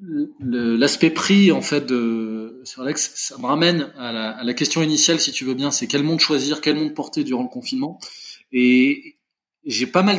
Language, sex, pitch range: French, male, 130-175 Hz